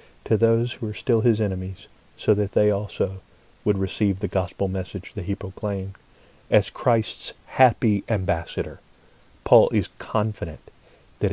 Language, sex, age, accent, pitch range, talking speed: English, male, 40-59, American, 95-120 Hz, 145 wpm